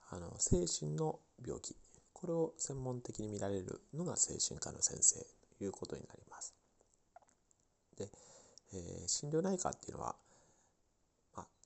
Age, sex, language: 40-59, male, Japanese